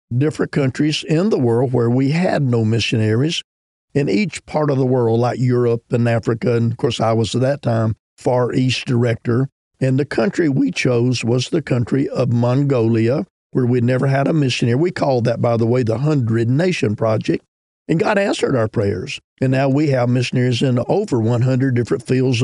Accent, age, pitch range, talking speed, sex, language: American, 50-69, 120-140 Hz, 195 wpm, male, English